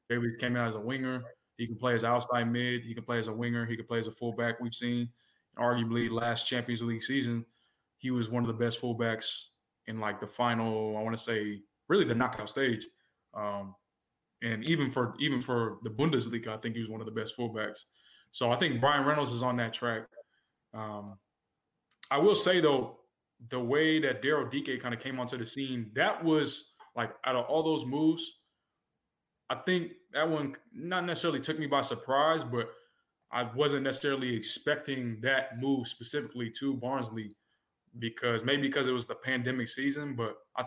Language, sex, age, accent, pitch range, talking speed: English, male, 20-39, American, 115-135 Hz, 195 wpm